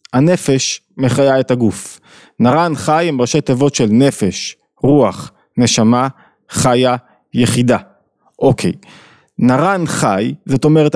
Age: 20-39